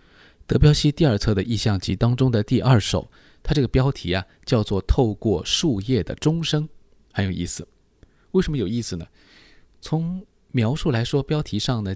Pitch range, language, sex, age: 95-135 Hz, Chinese, male, 20-39